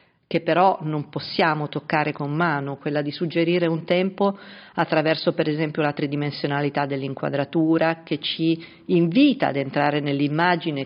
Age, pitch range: 50-69, 150-185 Hz